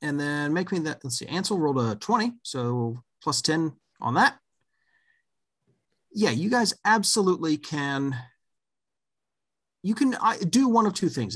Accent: American